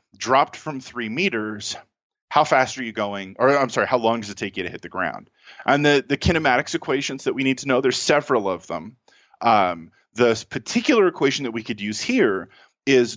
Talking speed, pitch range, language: 210 wpm, 105-140 Hz, English